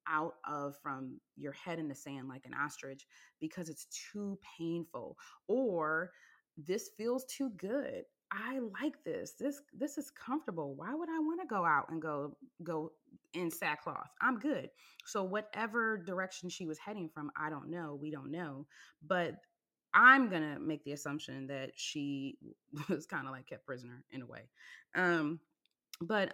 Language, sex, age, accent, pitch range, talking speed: English, female, 20-39, American, 150-200 Hz, 165 wpm